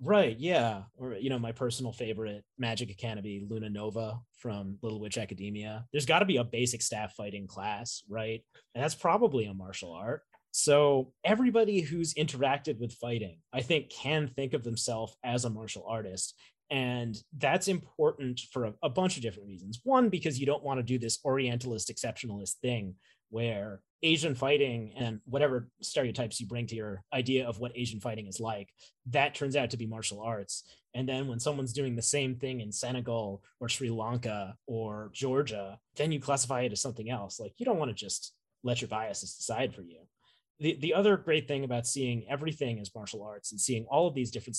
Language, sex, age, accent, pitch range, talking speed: English, male, 30-49, American, 110-140 Hz, 195 wpm